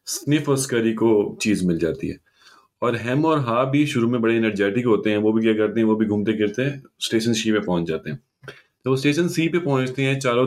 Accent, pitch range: native, 105-135 Hz